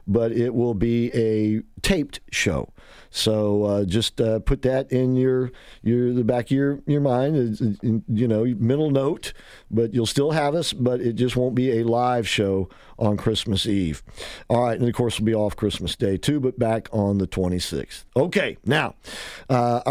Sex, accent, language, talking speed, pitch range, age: male, American, English, 185 wpm, 110-135 Hz, 50-69